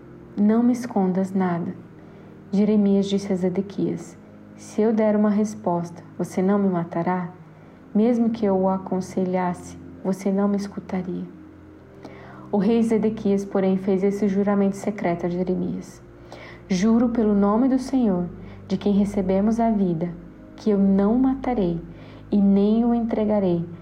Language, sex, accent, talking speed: Portuguese, female, Brazilian, 135 wpm